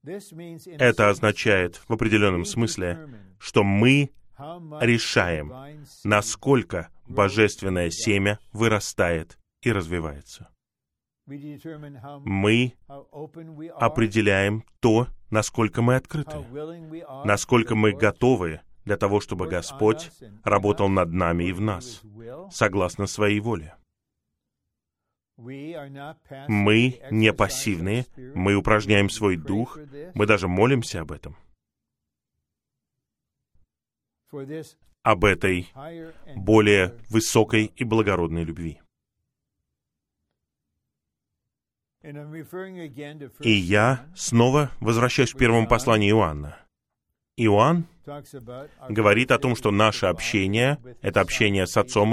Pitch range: 100-135 Hz